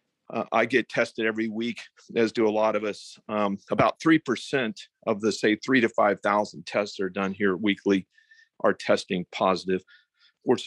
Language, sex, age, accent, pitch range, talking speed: English, male, 50-69, American, 100-125 Hz, 175 wpm